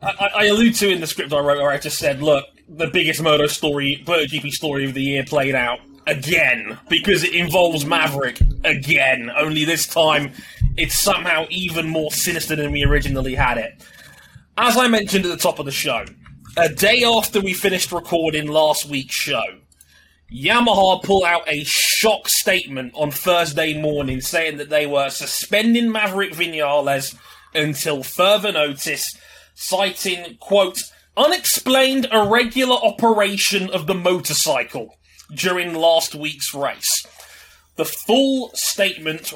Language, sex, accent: English, male, British